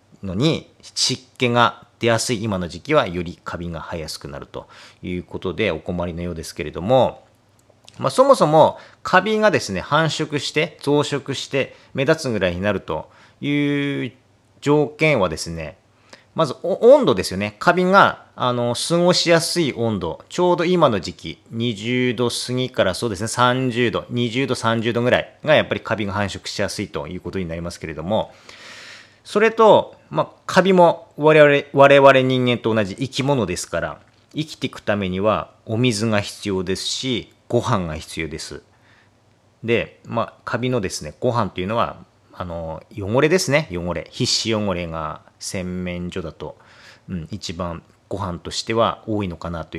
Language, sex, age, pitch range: Japanese, male, 40-59, 95-140 Hz